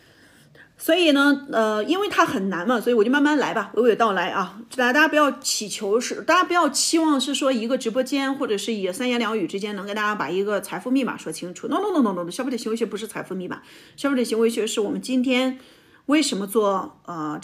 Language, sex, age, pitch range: Chinese, female, 40-59, 210-285 Hz